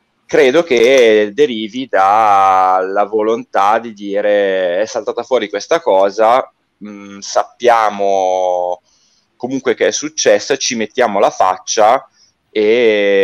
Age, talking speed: 20-39, 105 wpm